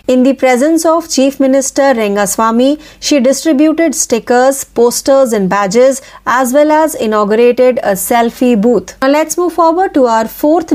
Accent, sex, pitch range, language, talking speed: native, female, 220-285 Hz, Marathi, 155 wpm